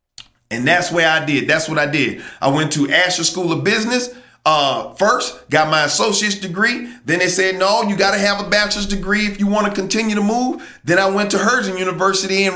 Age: 40-59